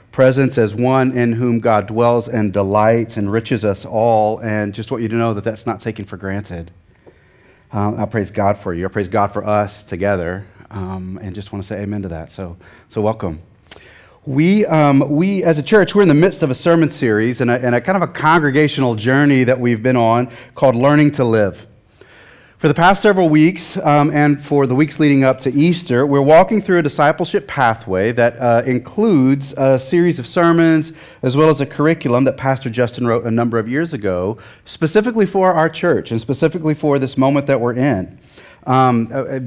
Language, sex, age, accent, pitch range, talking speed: English, male, 30-49, American, 115-150 Hz, 200 wpm